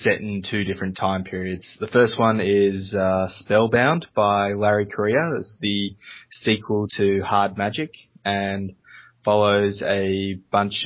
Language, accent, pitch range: English, Australian, 95-110 Hz